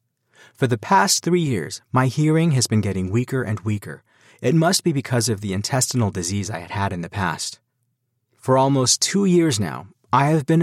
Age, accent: 30-49, American